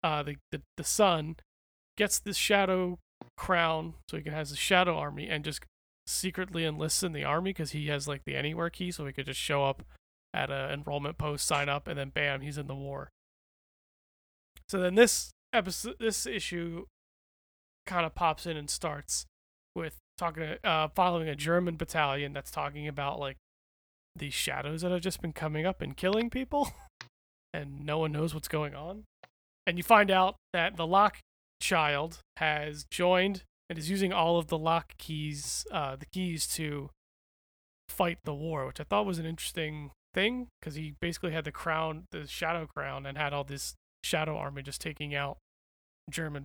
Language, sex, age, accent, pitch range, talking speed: English, male, 30-49, American, 140-180 Hz, 180 wpm